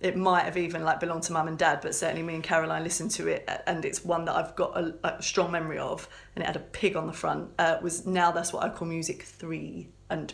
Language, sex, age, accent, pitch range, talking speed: English, female, 30-49, British, 165-185 Hz, 275 wpm